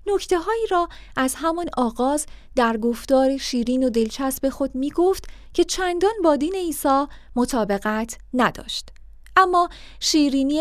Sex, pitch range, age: female, 245-315 Hz, 30-49